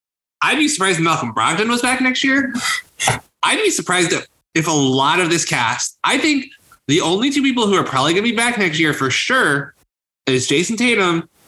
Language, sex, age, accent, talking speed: English, male, 20-39, American, 205 wpm